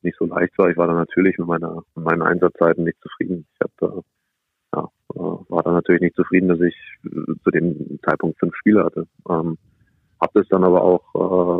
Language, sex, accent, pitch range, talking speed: German, male, German, 90-95 Hz, 210 wpm